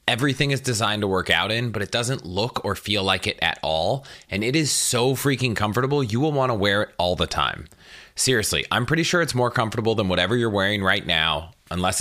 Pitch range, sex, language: 95-125 Hz, male, English